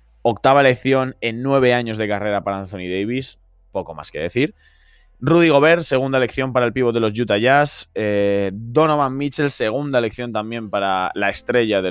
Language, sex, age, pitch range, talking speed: Spanish, male, 20-39, 90-120 Hz, 175 wpm